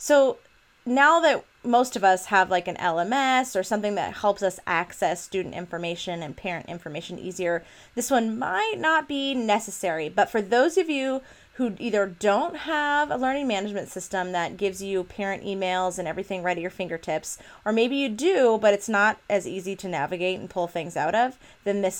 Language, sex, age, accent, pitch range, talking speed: English, female, 30-49, American, 185-245 Hz, 190 wpm